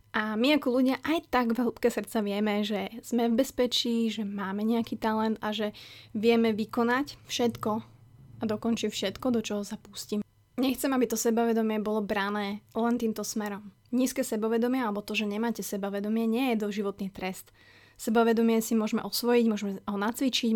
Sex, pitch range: female, 210-240 Hz